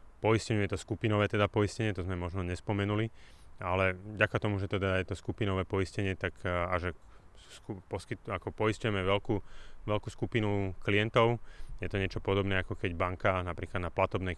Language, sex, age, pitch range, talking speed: Slovak, male, 30-49, 90-100 Hz, 165 wpm